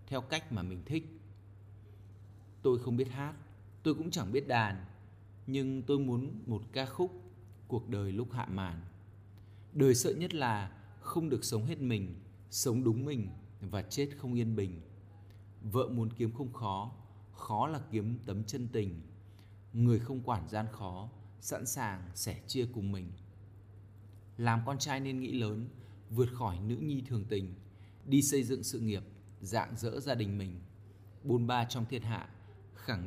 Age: 20-39